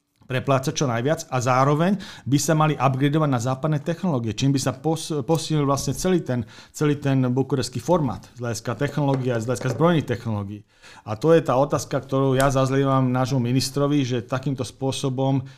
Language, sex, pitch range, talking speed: Slovak, male, 130-150 Hz, 170 wpm